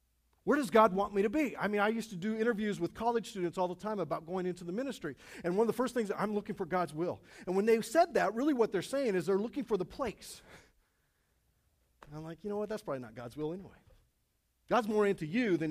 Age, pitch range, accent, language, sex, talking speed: 40-59, 165-230 Hz, American, English, male, 260 wpm